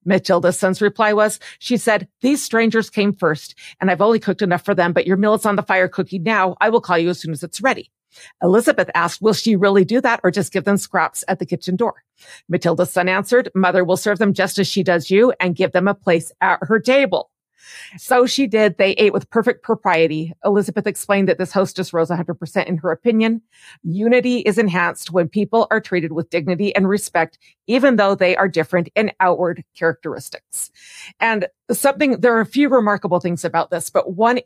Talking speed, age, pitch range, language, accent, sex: 210 wpm, 40-59, 175-215 Hz, English, American, female